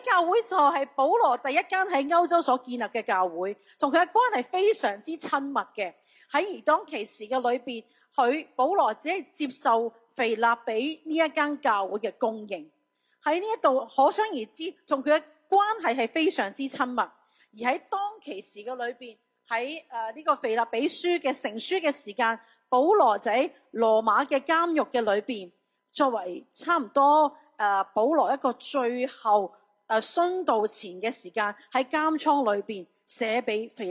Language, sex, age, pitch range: Chinese, female, 40-59, 220-300 Hz